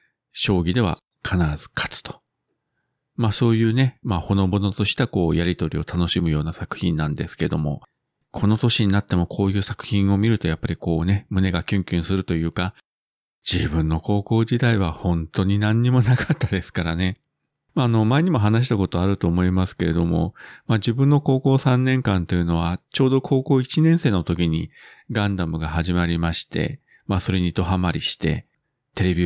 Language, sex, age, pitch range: Japanese, male, 40-59, 85-115 Hz